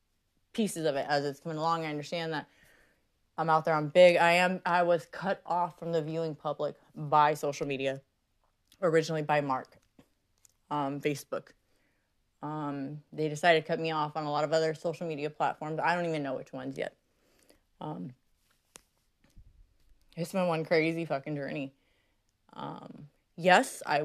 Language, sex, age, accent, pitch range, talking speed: English, female, 30-49, American, 150-180 Hz, 160 wpm